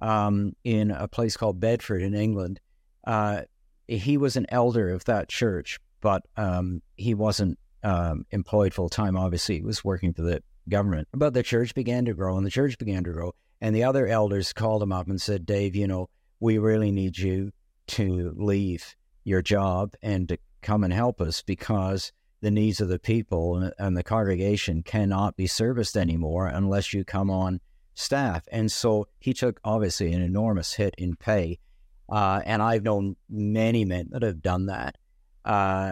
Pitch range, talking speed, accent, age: 95-110 Hz, 180 wpm, American, 60-79